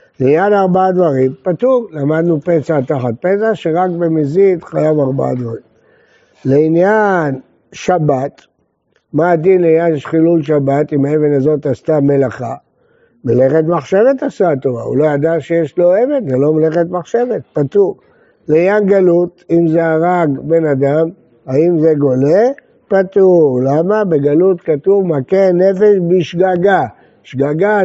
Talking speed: 125 wpm